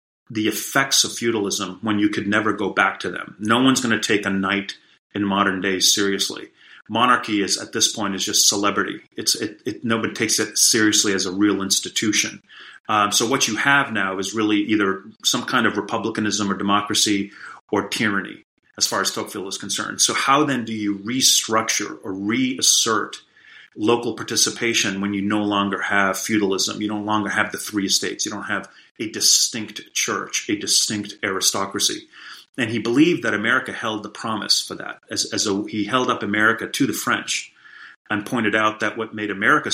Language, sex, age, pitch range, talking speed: English, male, 30-49, 100-115 Hz, 185 wpm